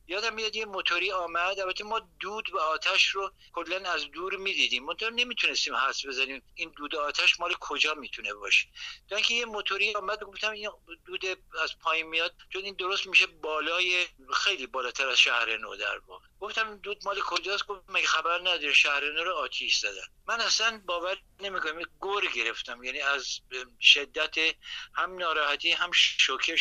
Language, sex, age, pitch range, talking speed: Persian, male, 60-79, 155-210 Hz, 165 wpm